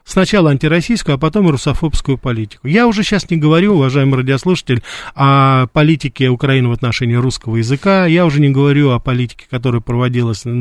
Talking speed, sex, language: 160 wpm, male, Russian